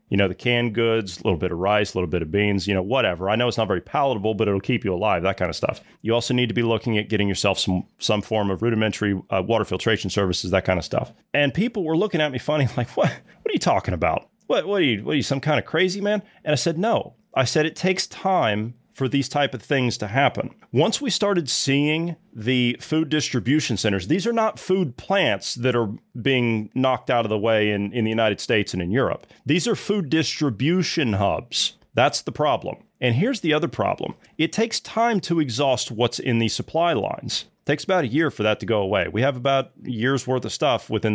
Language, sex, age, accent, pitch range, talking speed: English, male, 30-49, American, 110-150 Hz, 245 wpm